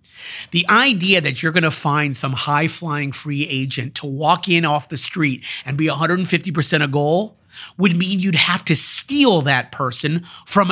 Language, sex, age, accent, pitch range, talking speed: English, male, 50-69, American, 135-175 Hz, 175 wpm